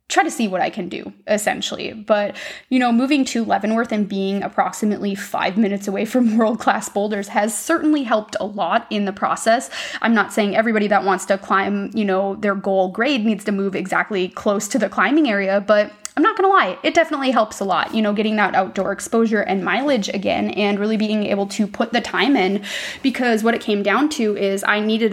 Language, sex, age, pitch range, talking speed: English, female, 20-39, 200-235 Hz, 215 wpm